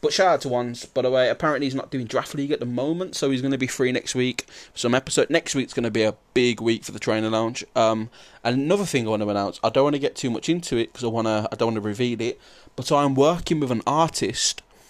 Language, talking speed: English, 290 wpm